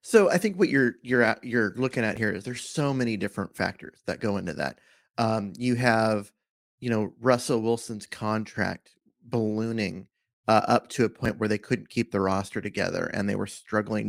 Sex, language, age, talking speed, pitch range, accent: male, English, 30-49, 195 wpm, 105-125 Hz, American